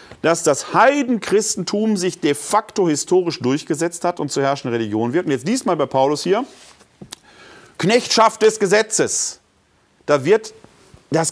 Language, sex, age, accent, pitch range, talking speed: German, male, 40-59, German, 150-210 Hz, 140 wpm